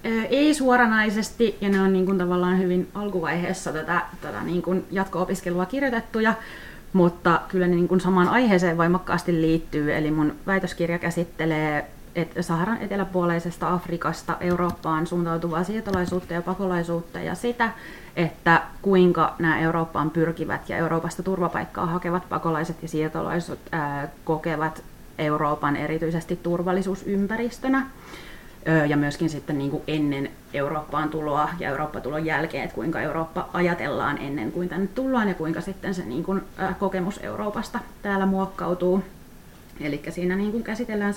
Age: 30-49